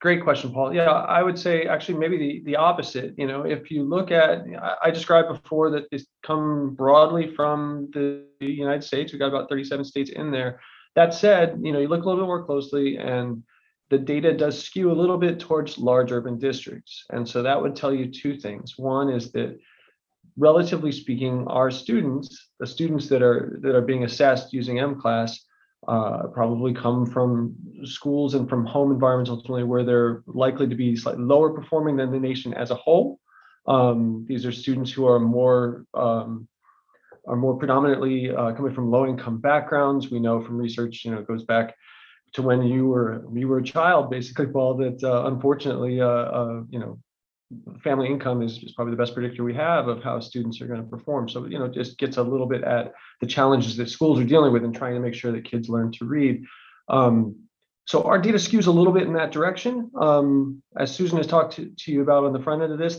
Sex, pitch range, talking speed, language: male, 125-155 Hz, 210 wpm, English